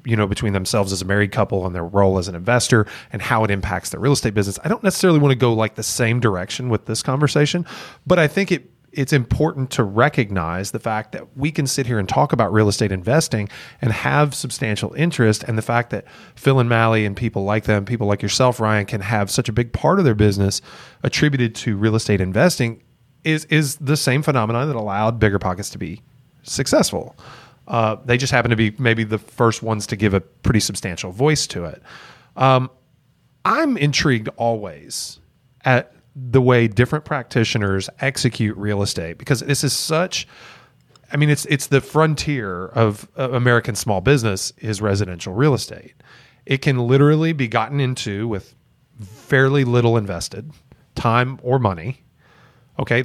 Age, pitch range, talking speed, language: 30-49, 105-140 Hz, 185 wpm, English